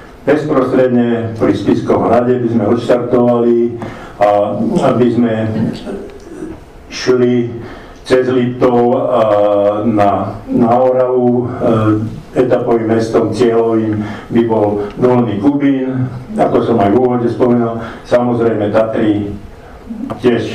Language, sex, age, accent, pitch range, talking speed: English, male, 50-69, Czech, 105-120 Hz, 95 wpm